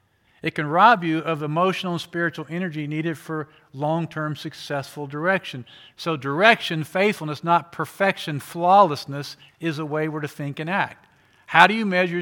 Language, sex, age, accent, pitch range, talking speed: English, male, 50-69, American, 135-175 Hz, 155 wpm